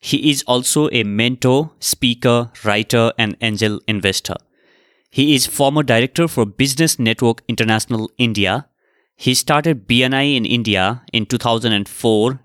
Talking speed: 125 wpm